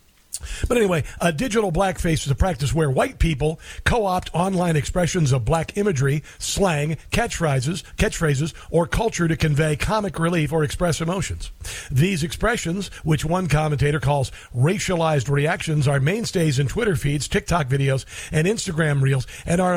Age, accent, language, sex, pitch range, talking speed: 50-69, American, English, male, 140-195 Hz, 150 wpm